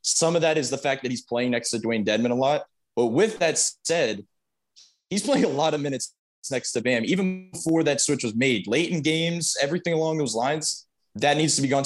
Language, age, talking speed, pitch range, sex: English, 20-39, 235 wpm, 125-160 Hz, male